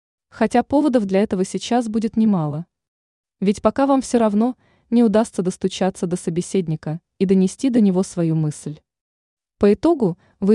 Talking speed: 150 wpm